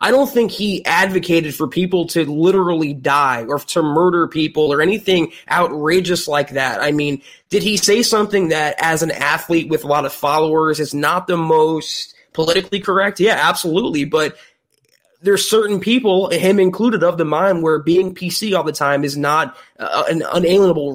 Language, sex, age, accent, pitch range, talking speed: English, male, 20-39, American, 155-195 Hz, 175 wpm